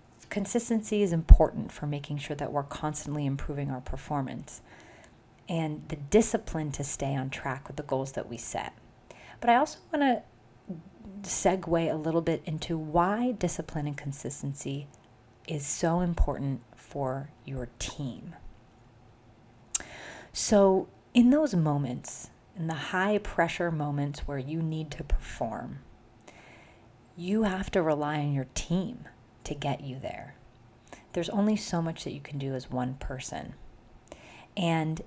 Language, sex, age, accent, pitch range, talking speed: English, female, 30-49, American, 135-175 Hz, 140 wpm